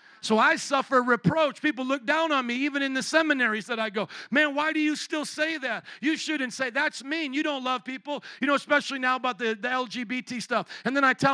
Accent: American